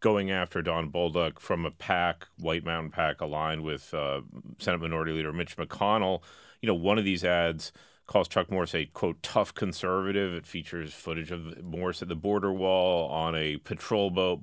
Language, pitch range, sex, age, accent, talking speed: English, 80-95 Hz, male, 40-59, American, 185 wpm